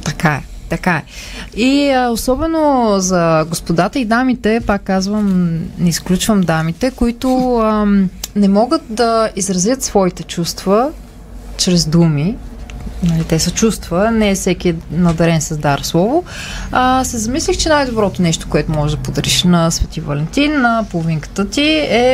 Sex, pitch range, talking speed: female, 185-240 Hz, 145 wpm